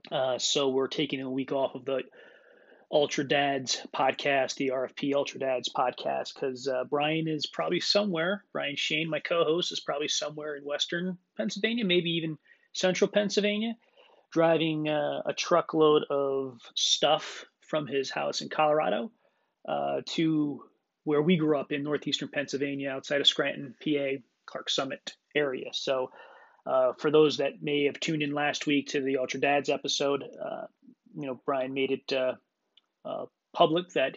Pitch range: 135-170 Hz